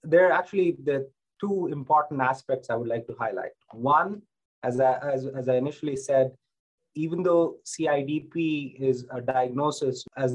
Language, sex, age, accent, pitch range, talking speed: English, male, 30-49, Indian, 125-150 Hz, 155 wpm